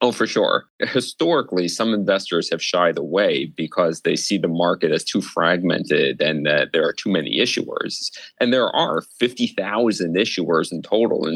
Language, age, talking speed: English, 30-49, 170 wpm